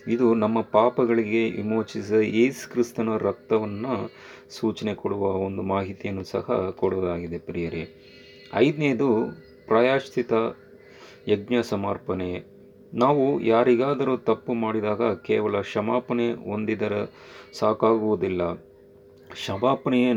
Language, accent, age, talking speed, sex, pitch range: Kannada, native, 30-49, 80 wpm, male, 100-120 Hz